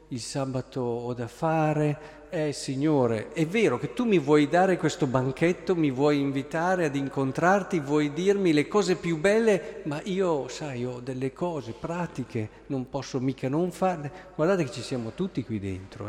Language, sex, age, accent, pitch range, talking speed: Italian, male, 50-69, native, 130-180 Hz, 170 wpm